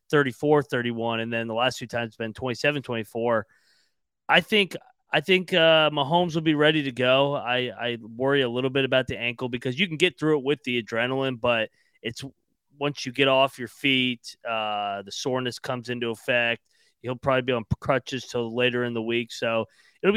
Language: English